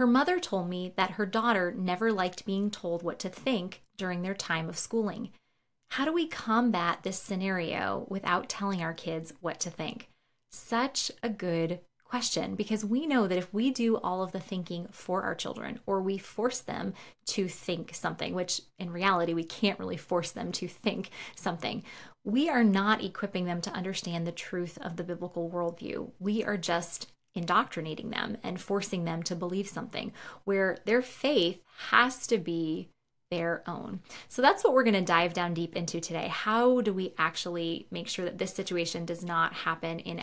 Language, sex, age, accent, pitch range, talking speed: English, female, 20-39, American, 170-210 Hz, 185 wpm